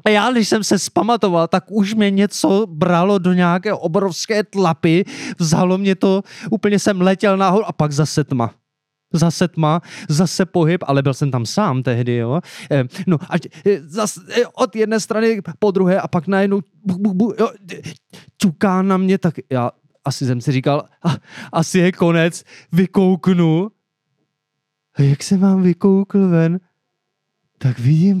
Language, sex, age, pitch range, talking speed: Czech, male, 20-39, 140-190 Hz, 155 wpm